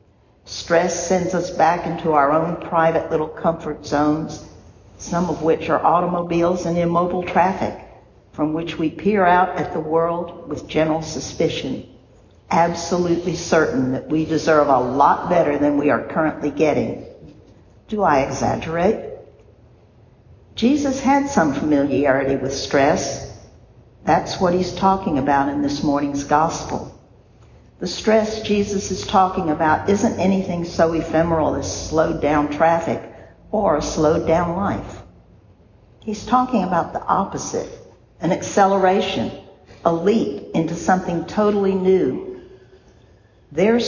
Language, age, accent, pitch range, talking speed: English, 60-79, American, 140-180 Hz, 130 wpm